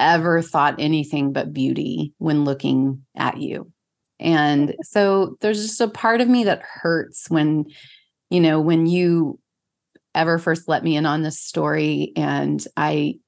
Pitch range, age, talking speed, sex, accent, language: 150-185 Hz, 30-49, 155 wpm, female, American, English